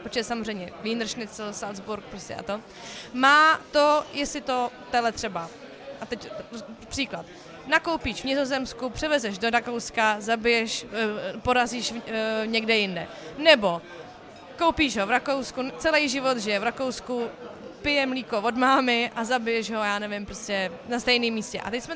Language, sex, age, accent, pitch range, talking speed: Czech, female, 20-39, native, 215-270 Hz, 140 wpm